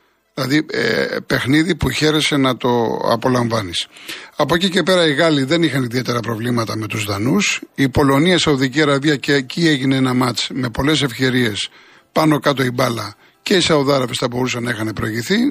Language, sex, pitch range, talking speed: Greek, male, 125-155 Hz, 175 wpm